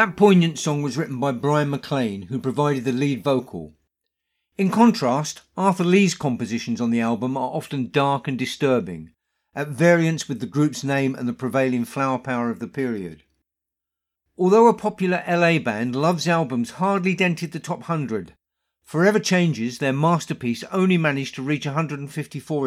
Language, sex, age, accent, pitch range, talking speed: English, male, 50-69, British, 125-170 Hz, 160 wpm